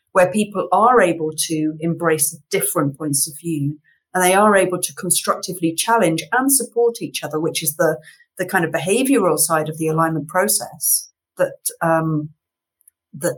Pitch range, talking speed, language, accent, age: 160-200 Hz, 155 wpm, English, British, 40-59